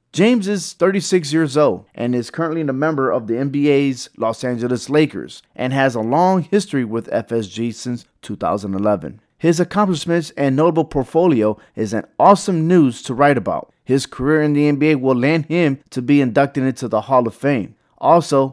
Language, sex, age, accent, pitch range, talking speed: English, male, 30-49, American, 120-155 Hz, 175 wpm